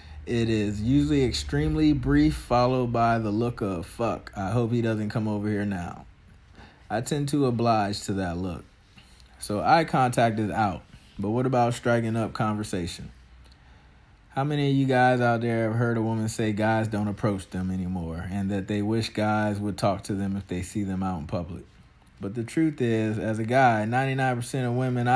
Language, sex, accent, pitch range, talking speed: English, male, American, 100-120 Hz, 190 wpm